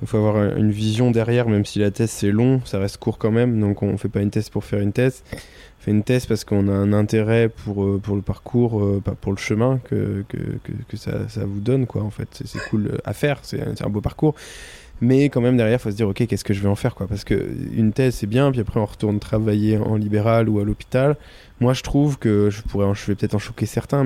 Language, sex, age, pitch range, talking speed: French, male, 20-39, 105-125 Hz, 265 wpm